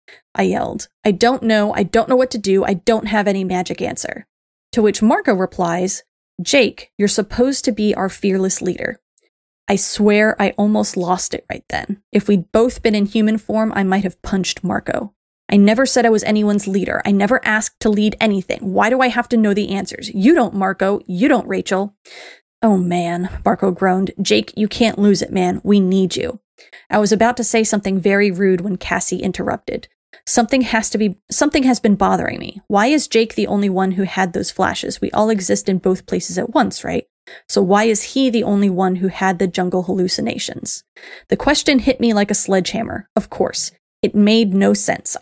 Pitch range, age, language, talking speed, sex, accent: 190-225 Hz, 20-39, English, 205 wpm, female, American